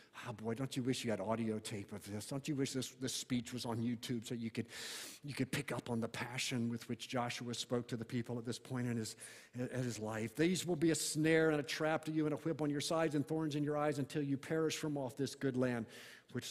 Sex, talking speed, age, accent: male, 275 wpm, 50-69, American